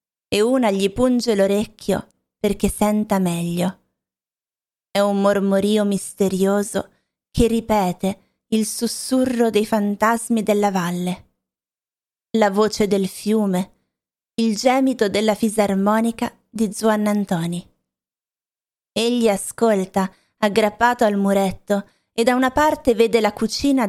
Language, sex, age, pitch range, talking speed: Italian, female, 20-39, 195-235 Hz, 110 wpm